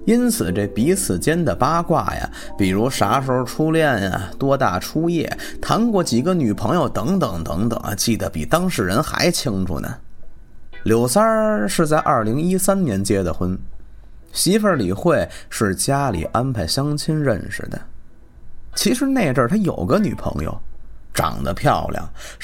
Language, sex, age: Chinese, male, 30-49